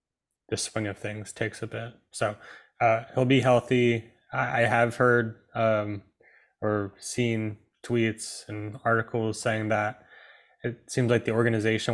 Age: 20-39